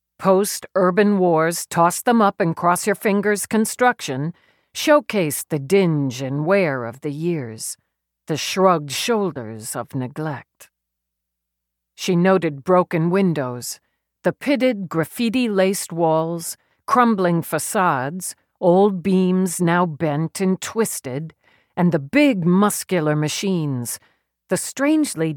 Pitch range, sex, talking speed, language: 125-190 Hz, female, 95 wpm, English